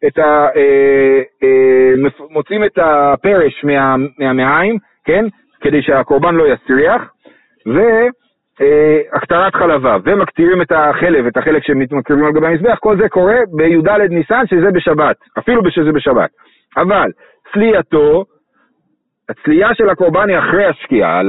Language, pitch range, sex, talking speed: Hebrew, 155-215 Hz, male, 130 wpm